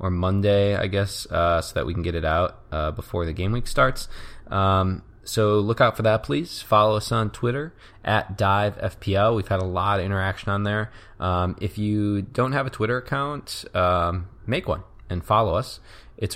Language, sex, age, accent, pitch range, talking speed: English, male, 20-39, American, 85-105 Hz, 200 wpm